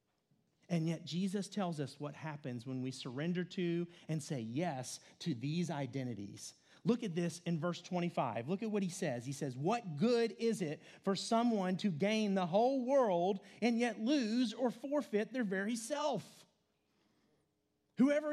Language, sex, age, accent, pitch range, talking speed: English, male, 30-49, American, 180-260 Hz, 165 wpm